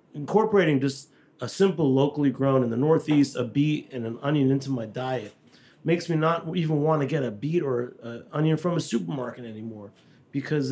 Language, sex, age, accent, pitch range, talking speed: English, male, 40-59, American, 130-175 Hz, 190 wpm